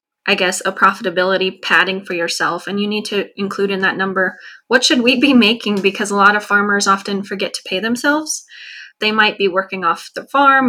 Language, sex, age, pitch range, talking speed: English, female, 20-39, 190-215 Hz, 210 wpm